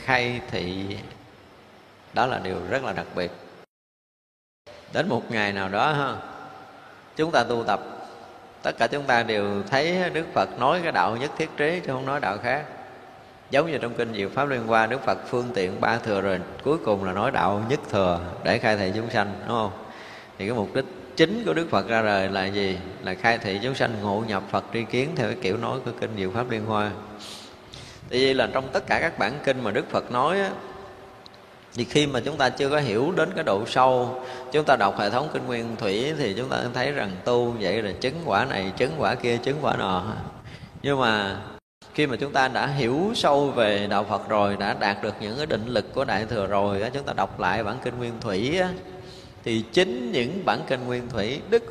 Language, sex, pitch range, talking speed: Vietnamese, male, 100-130 Hz, 220 wpm